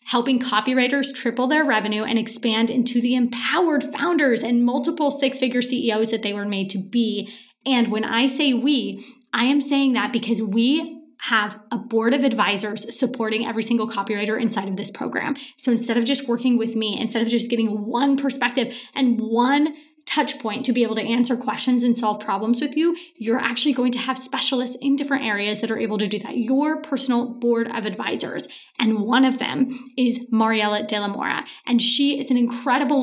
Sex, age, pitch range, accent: female, 20-39, 225-270 Hz, American